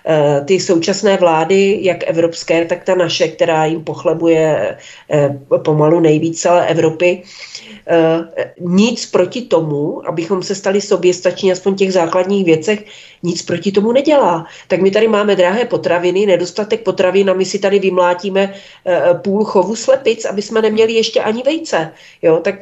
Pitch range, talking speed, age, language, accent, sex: 175-205 Hz, 145 wpm, 40-59, Czech, native, female